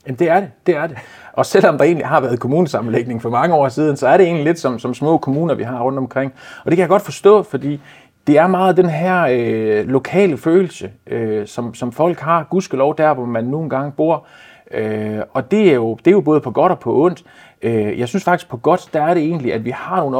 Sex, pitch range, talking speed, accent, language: male, 120-160 Hz, 255 wpm, native, Danish